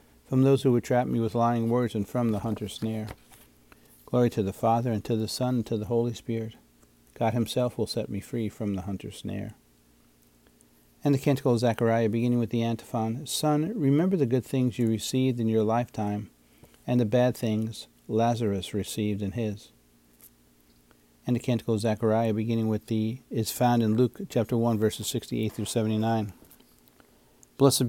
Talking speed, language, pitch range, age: 180 wpm, English, 100-120 Hz, 50-69